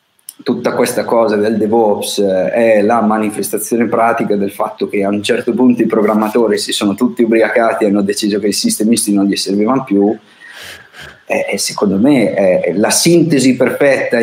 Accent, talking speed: native, 165 wpm